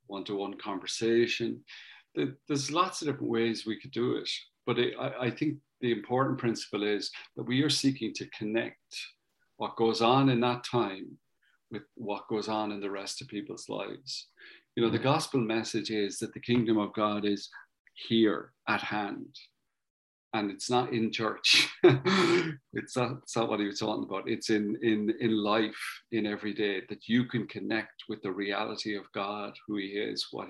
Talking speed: 175 wpm